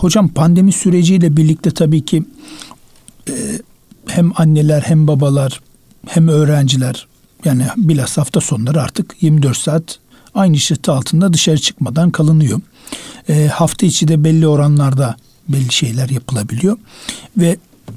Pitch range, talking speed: 150-180 Hz, 120 wpm